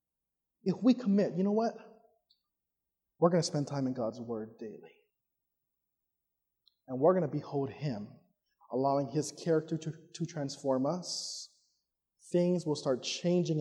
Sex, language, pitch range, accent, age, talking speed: male, English, 150-205 Hz, American, 20-39, 140 wpm